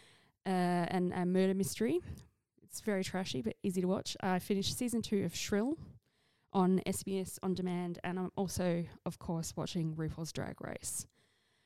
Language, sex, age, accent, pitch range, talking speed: English, female, 20-39, Australian, 165-195 Hz, 160 wpm